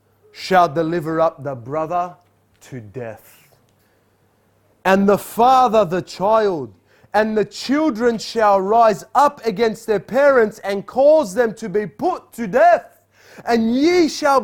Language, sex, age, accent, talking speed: English, male, 30-49, Australian, 135 wpm